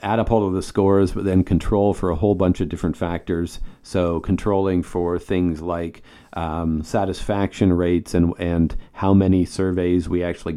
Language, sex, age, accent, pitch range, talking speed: English, male, 40-59, American, 85-100 Hz, 175 wpm